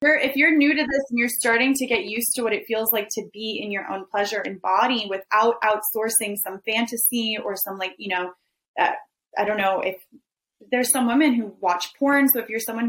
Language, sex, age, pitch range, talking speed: English, female, 20-39, 190-240 Hz, 225 wpm